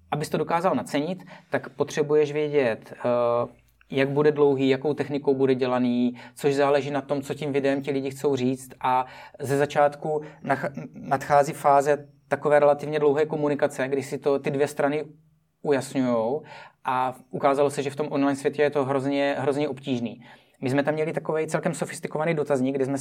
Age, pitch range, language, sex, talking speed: 30-49, 135-145 Hz, Czech, male, 165 wpm